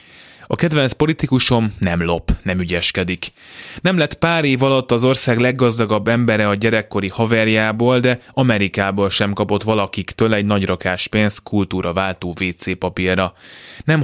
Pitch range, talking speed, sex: 95-115 Hz, 135 wpm, male